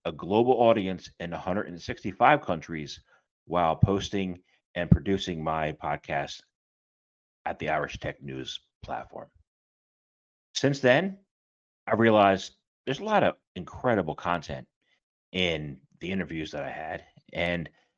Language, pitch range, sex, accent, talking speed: English, 75-115 Hz, male, American, 115 wpm